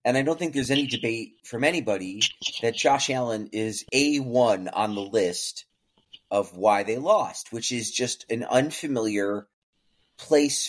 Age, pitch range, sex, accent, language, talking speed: 30-49, 100-125 Hz, male, American, English, 150 wpm